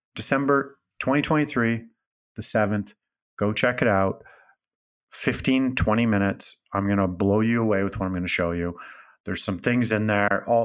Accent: American